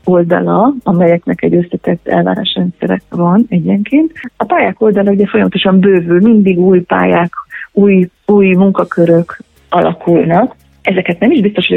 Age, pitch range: 30-49, 165-205 Hz